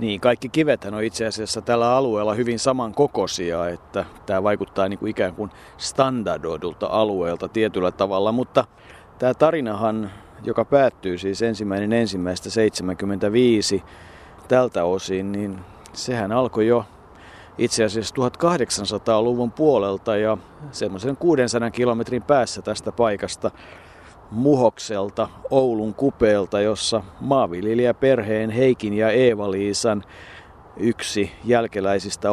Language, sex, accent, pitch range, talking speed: Finnish, male, native, 100-125 Hz, 100 wpm